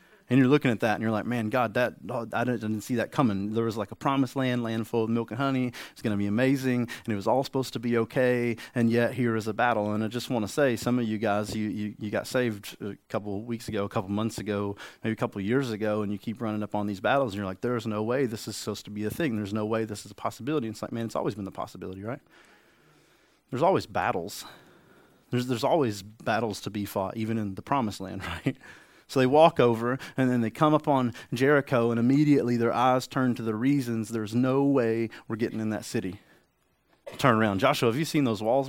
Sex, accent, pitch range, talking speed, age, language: male, American, 110-130 Hz, 255 wpm, 30-49, English